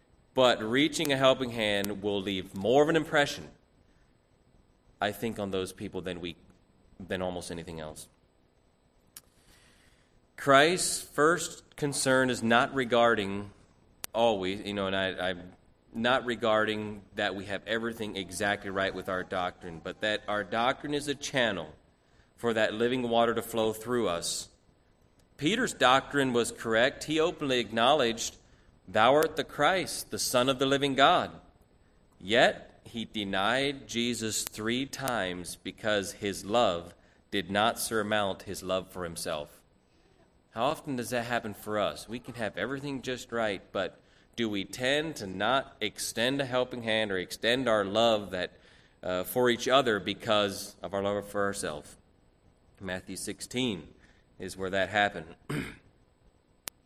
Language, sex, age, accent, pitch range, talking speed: English, male, 30-49, American, 95-120 Hz, 140 wpm